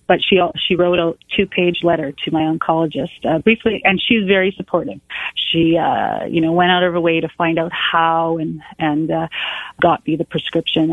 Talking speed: 200 wpm